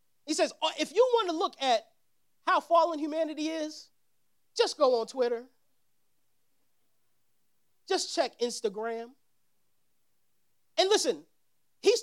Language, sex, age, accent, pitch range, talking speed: English, male, 30-49, American, 250-330 Hz, 110 wpm